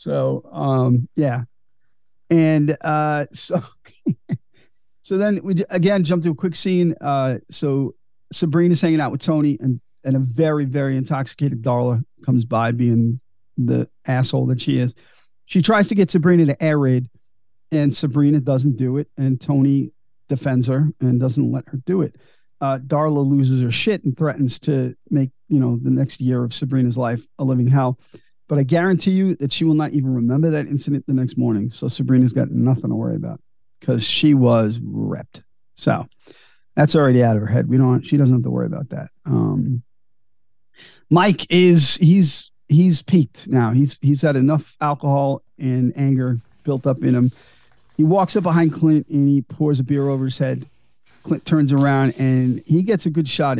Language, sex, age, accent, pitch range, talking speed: English, male, 50-69, American, 125-155 Hz, 180 wpm